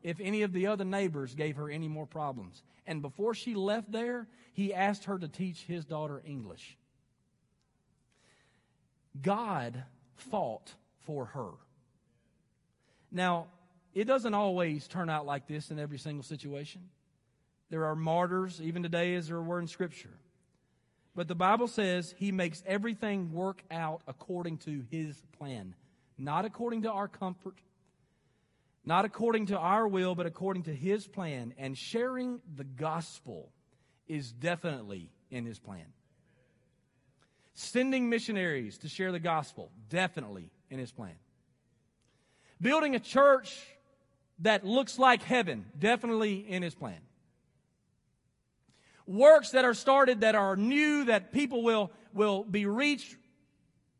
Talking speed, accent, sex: 135 wpm, American, male